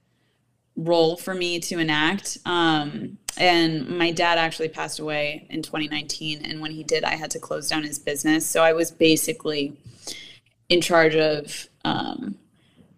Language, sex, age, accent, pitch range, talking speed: English, female, 20-39, American, 155-185 Hz, 155 wpm